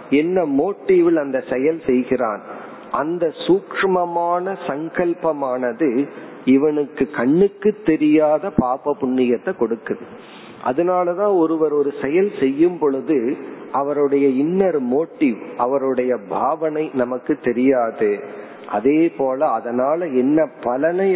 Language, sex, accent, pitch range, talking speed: Tamil, male, native, 135-180 Hz, 90 wpm